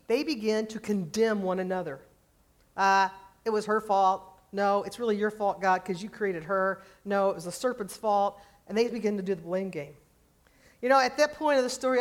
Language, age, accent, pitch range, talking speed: English, 40-59, American, 185-235 Hz, 215 wpm